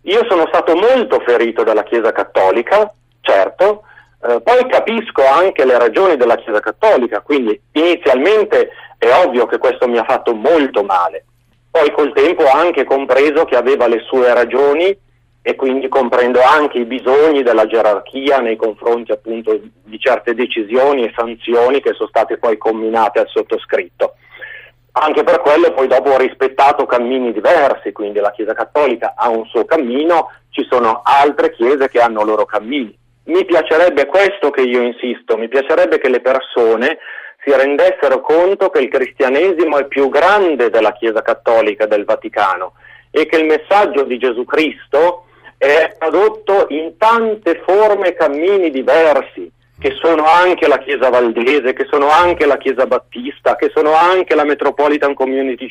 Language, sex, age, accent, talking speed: Italian, male, 40-59, native, 155 wpm